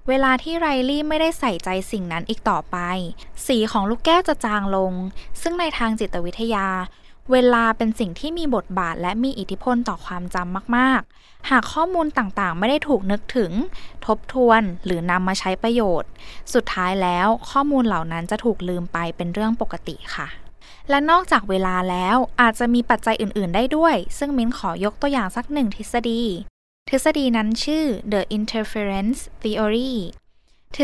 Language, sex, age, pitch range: Thai, female, 10-29, 190-265 Hz